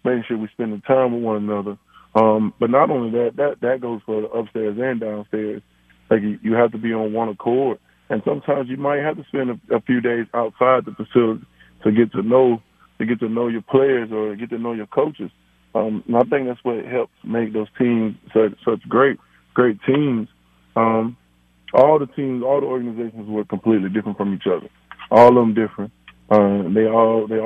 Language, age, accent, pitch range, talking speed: English, 20-39, American, 110-125 Hz, 210 wpm